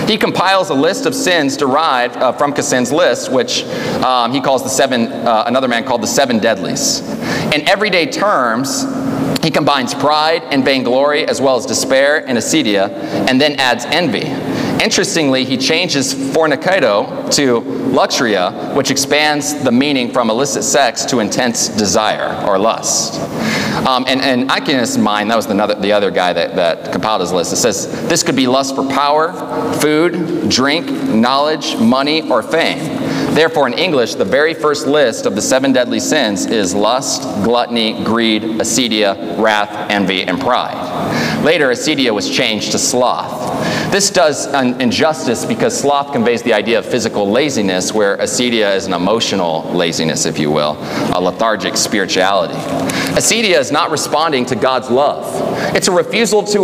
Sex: male